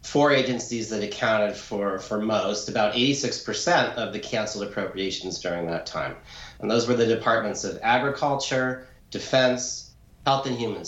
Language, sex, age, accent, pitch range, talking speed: English, male, 40-59, American, 100-130 Hz, 150 wpm